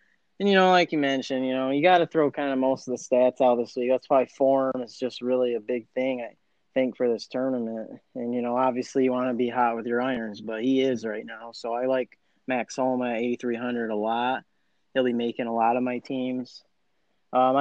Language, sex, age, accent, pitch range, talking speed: English, male, 20-39, American, 125-160 Hz, 240 wpm